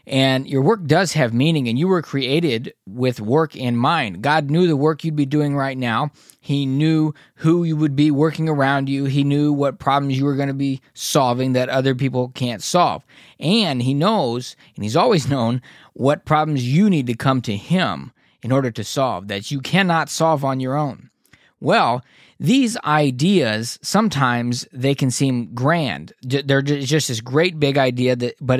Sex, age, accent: male, 20-39, American